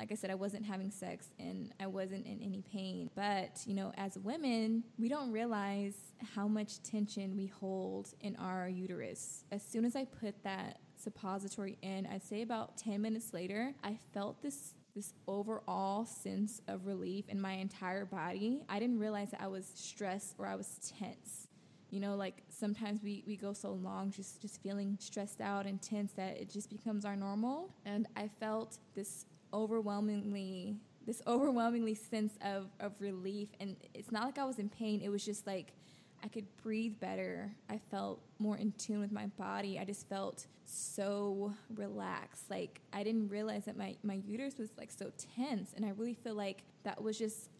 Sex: female